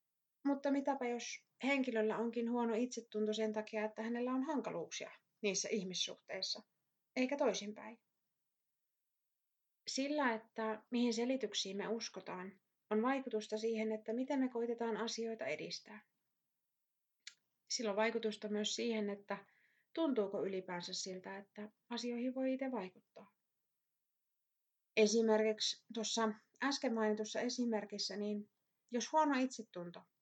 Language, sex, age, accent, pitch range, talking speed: Finnish, female, 30-49, native, 210-245 Hz, 105 wpm